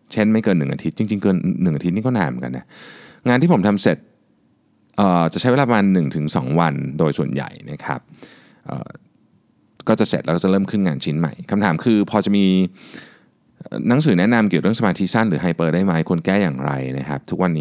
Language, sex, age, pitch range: Thai, male, 20-39, 80-100 Hz